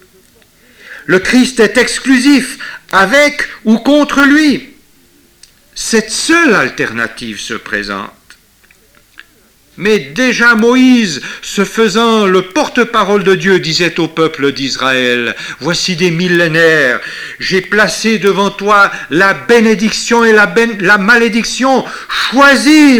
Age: 60-79